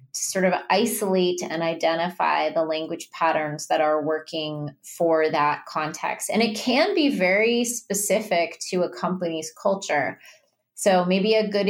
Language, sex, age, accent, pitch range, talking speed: English, female, 20-39, American, 160-195 Hz, 150 wpm